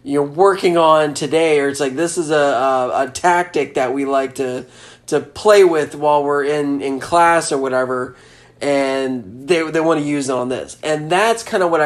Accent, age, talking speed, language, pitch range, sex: American, 20-39, 205 wpm, English, 125-165 Hz, male